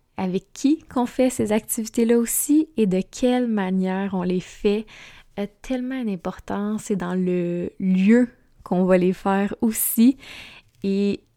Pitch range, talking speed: 185-220 Hz, 145 wpm